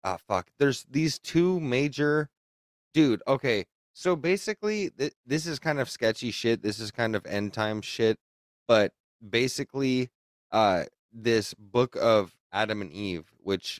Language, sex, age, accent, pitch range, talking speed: English, male, 20-39, American, 95-125 Hz, 140 wpm